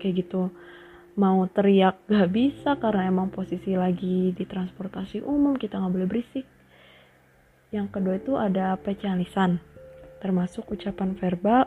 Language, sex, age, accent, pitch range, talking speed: Indonesian, female, 20-39, native, 185-230 Hz, 130 wpm